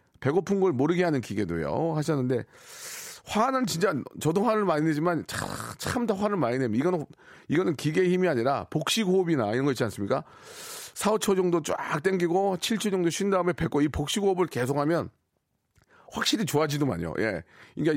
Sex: male